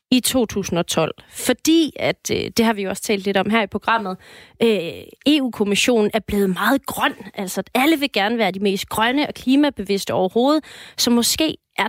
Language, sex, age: Danish, female, 30-49